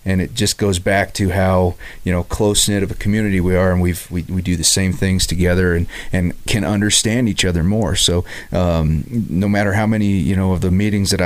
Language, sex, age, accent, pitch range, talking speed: English, male, 30-49, American, 85-100 Hz, 235 wpm